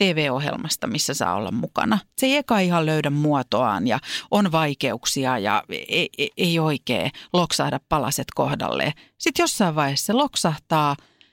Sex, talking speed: female, 145 wpm